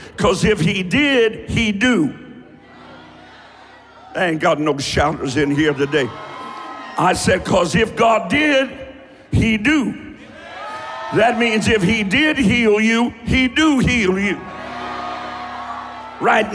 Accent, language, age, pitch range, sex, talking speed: American, English, 60-79, 145-220 Hz, male, 125 wpm